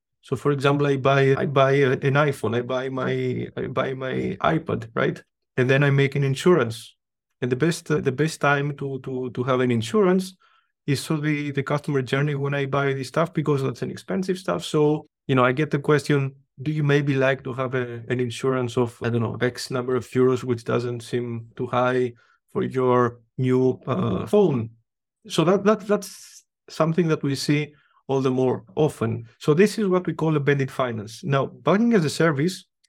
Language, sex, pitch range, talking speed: English, male, 130-160 Hz, 205 wpm